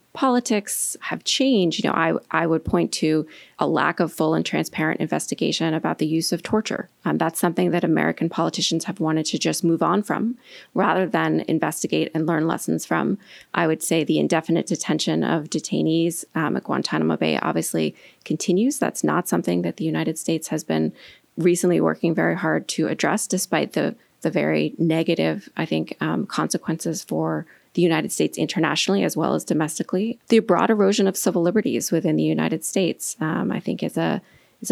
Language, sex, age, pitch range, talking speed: English, female, 20-39, 155-185 Hz, 180 wpm